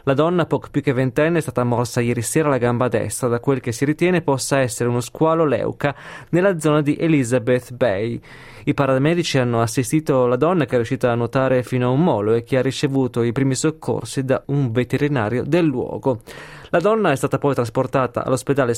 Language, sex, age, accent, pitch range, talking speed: Italian, male, 20-39, native, 120-150 Hz, 200 wpm